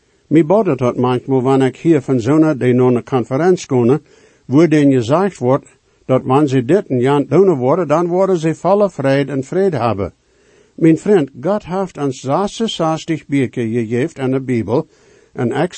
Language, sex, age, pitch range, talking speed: English, male, 60-79, 130-165 Hz, 190 wpm